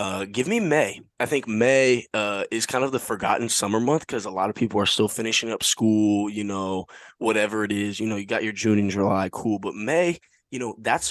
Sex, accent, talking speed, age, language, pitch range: male, American, 240 wpm, 20-39, English, 100-115 Hz